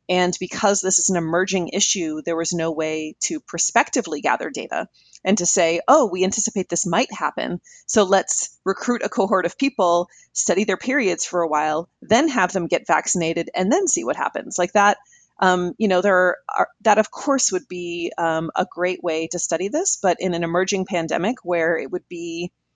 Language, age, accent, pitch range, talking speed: English, 30-49, American, 170-205 Hz, 190 wpm